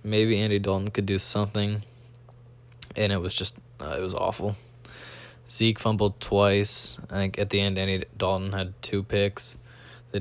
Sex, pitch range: male, 100-120 Hz